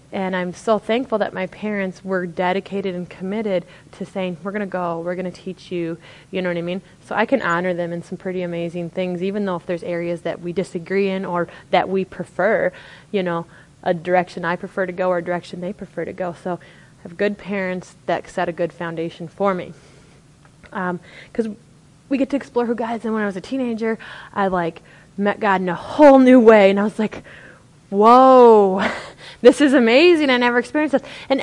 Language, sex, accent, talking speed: English, female, American, 220 wpm